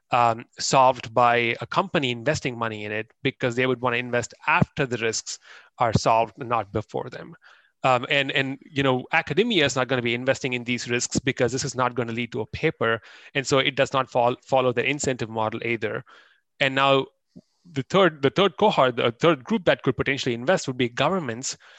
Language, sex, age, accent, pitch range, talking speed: English, male, 30-49, Indian, 120-145 Hz, 210 wpm